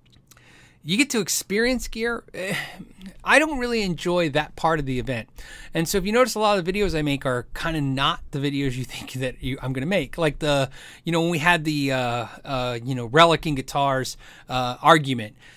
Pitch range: 140-200 Hz